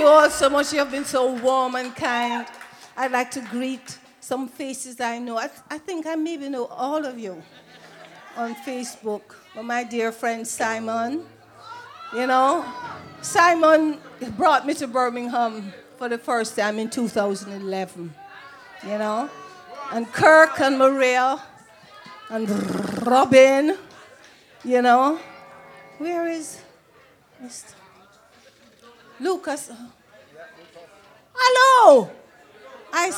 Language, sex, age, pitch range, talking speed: English, female, 40-59, 230-300 Hz, 120 wpm